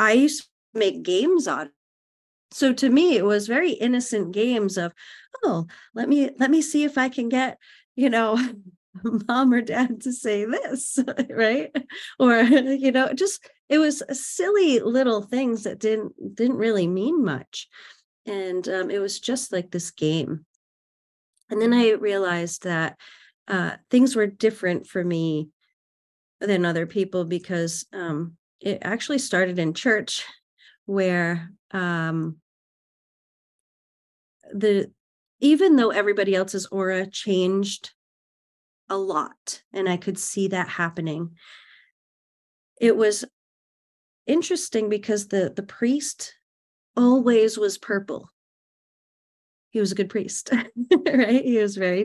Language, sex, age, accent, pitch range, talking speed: English, female, 40-59, American, 185-255 Hz, 130 wpm